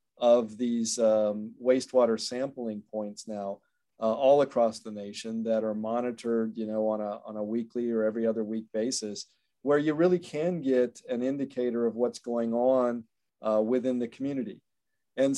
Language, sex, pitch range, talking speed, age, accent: English, male, 110-130 Hz, 170 wpm, 40-59, American